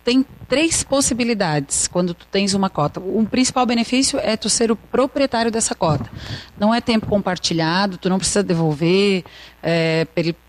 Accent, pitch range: Brazilian, 175-225 Hz